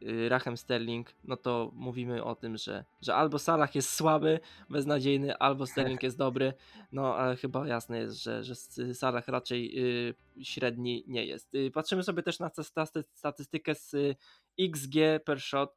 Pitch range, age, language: 130-150 Hz, 20-39, Polish